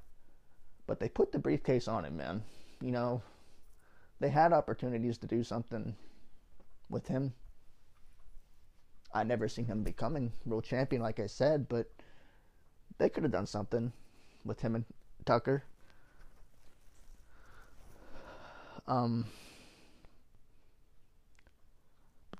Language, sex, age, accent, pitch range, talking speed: English, male, 20-39, American, 105-125 Hz, 105 wpm